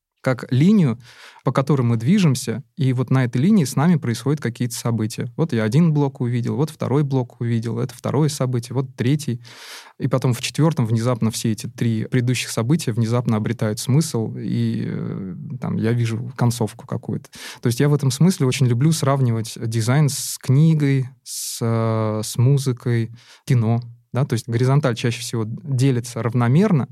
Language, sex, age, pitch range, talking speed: Russian, male, 20-39, 115-140 Hz, 165 wpm